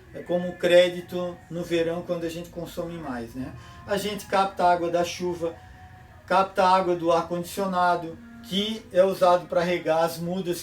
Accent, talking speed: Brazilian, 160 wpm